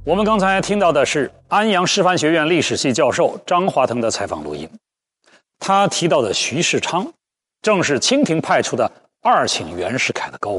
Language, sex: Chinese, male